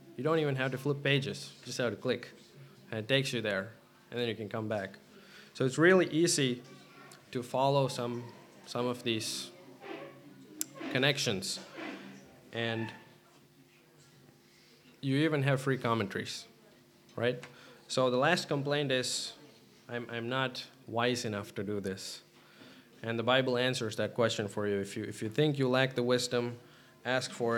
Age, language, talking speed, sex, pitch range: 20-39, English, 160 wpm, male, 110-130 Hz